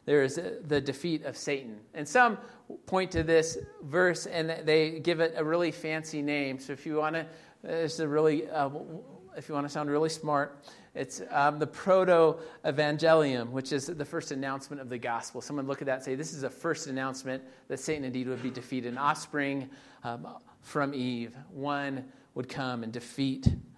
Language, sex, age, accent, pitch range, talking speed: English, male, 40-59, American, 135-165 Hz, 175 wpm